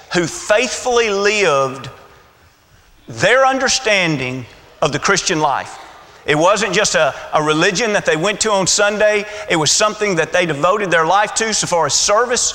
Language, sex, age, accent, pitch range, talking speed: English, male, 40-59, American, 155-215 Hz, 165 wpm